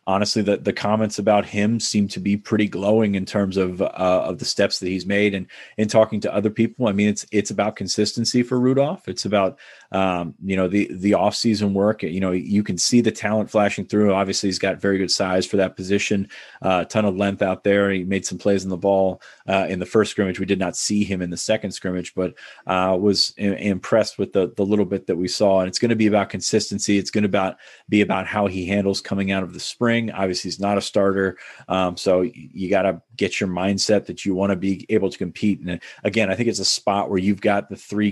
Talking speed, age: 250 wpm, 30-49